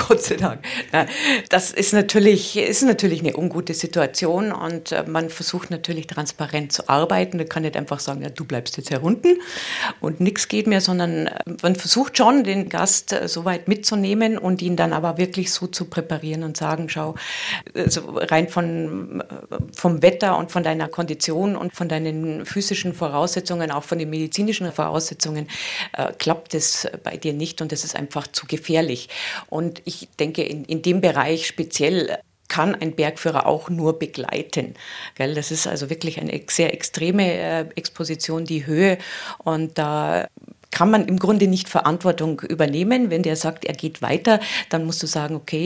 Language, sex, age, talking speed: German, female, 50-69, 165 wpm